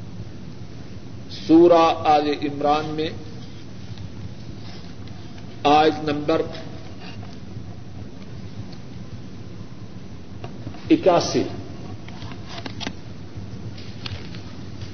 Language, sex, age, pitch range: Urdu, male, 50-69, 100-170 Hz